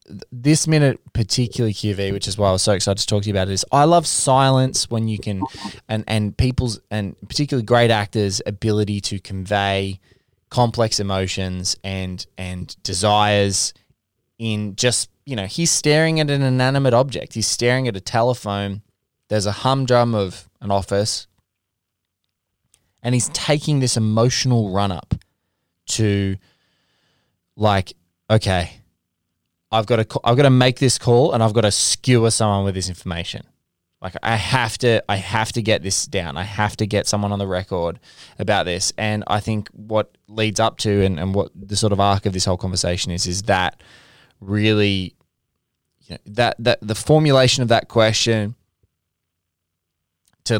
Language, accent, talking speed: English, Australian, 170 wpm